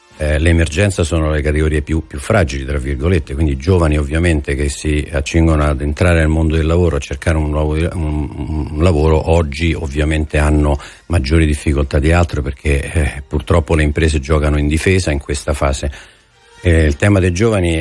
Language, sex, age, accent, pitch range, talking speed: Italian, male, 50-69, native, 75-90 Hz, 180 wpm